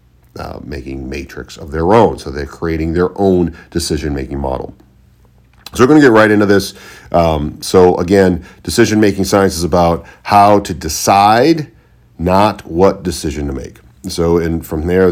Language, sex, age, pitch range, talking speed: English, male, 40-59, 75-95 Hz, 160 wpm